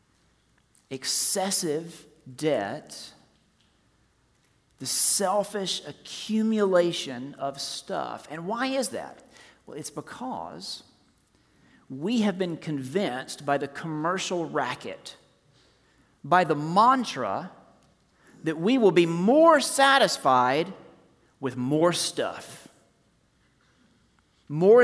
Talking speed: 85 wpm